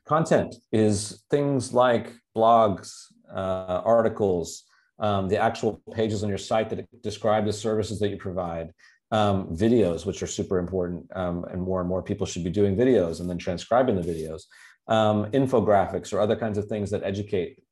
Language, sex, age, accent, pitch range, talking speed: English, male, 40-59, American, 90-110 Hz, 175 wpm